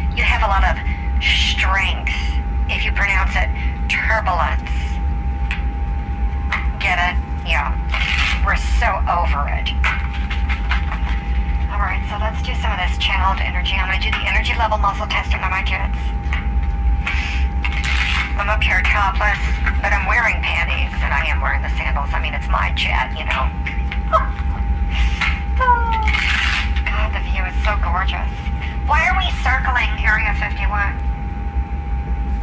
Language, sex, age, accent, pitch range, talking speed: English, male, 50-69, American, 65-75 Hz, 135 wpm